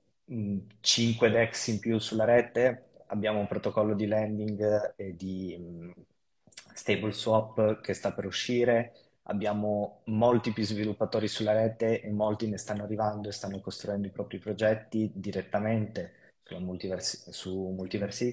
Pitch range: 100-110 Hz